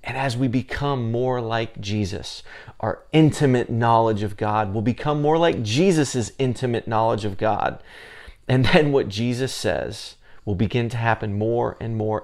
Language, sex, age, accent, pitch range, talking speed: English, male, 30-49, American, 105-125 Hz, 160 wpm